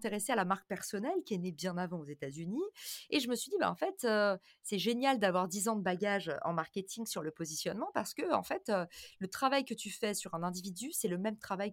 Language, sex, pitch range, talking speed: French, female, 185-255 Hz, 255 wpm